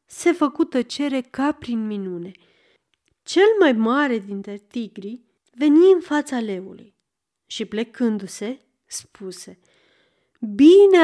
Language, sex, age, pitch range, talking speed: Romanian, female, 30-49, 210-305 Hz, 105 wpm